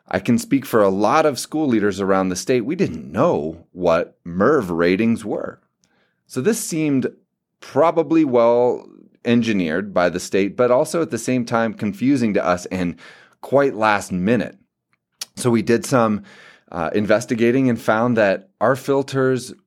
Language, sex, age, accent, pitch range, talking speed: English, male, 30-49, American, 95-125 Hz, 160 wpm